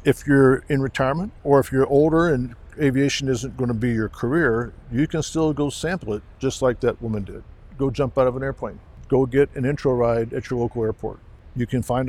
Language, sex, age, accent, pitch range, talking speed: English, male, 50-69, American, 110-135 Hz, 225 wpm